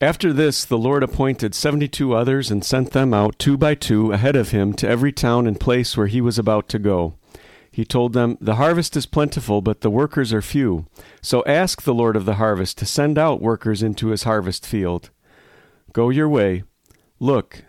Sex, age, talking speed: male, 50-69, 200 wpm